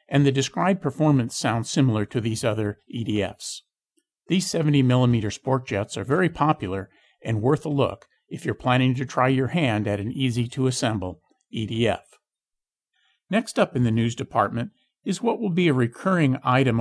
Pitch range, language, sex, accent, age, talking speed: 110-145 Hz, English, male, American, 50-69, 160 wpm